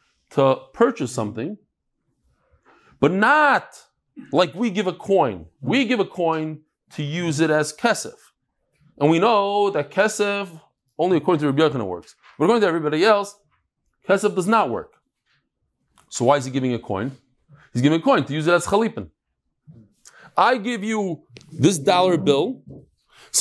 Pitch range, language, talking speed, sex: 145-205 Hz, English, 160 wpm, male